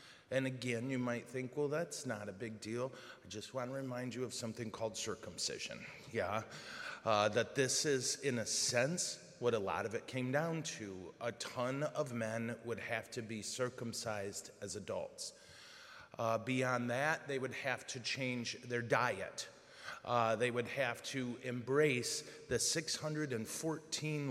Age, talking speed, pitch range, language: 30-49, 165 wpm, 115-145 Hz, English